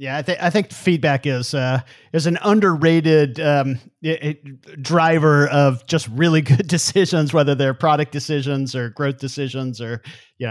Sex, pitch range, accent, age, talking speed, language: male, 130-160 Hz, American, 40-59, 165 wpm, English